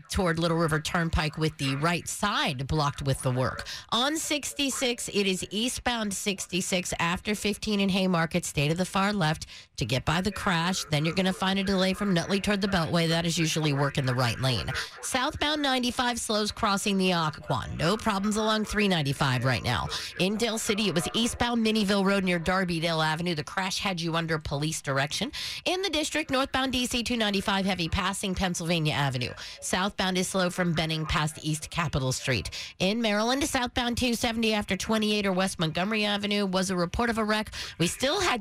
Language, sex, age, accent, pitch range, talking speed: English, female, 40-59, American, 160-215 Hz, 185 wpm